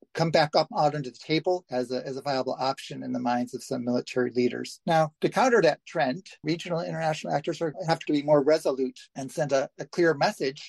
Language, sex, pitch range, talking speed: English, male, 130-160 Hz, 230 wpm